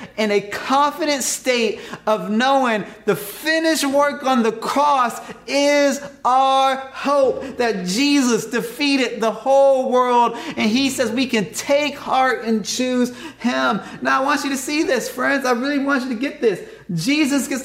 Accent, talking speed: American, 165 wpm